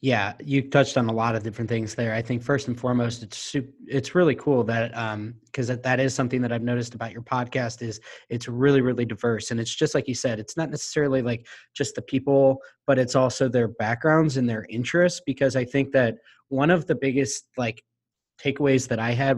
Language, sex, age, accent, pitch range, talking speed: English, male, 20-39, American, 115-135 Hz, 225 wpm